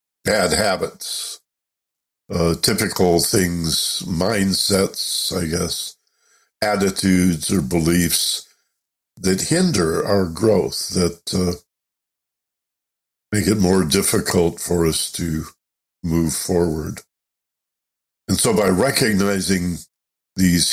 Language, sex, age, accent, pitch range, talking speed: English, male, 60-79, American, 85-95 Hz, 90 wpm